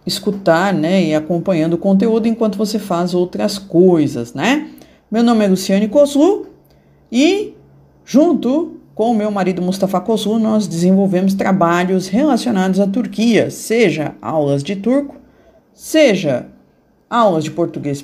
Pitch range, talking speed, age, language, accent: 180-245 Hz, 130 wpm, 50-69, Portuguese, Brazilian